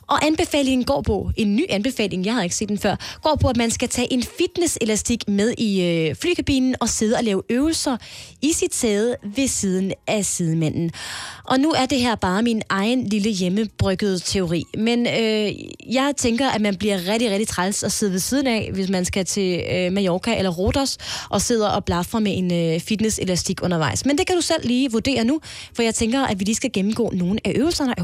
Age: 20-39